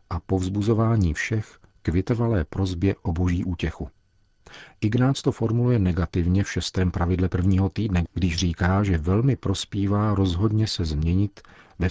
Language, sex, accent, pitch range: Czech, male, native, 85-100 Hz